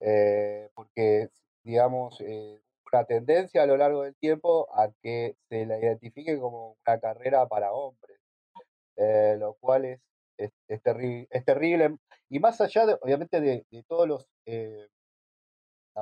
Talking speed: 150 wpm